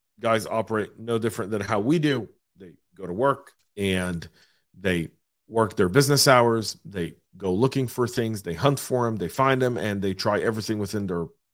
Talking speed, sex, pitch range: 185 wpm, male, 95-125 Hz